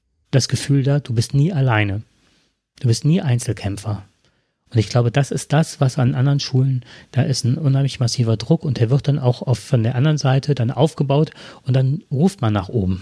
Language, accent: German, German